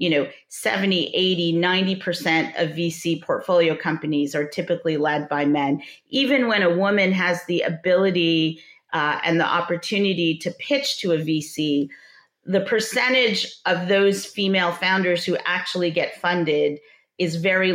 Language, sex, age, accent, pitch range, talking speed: English, female, 40-59, American, 160-200 Hz, 145 wpm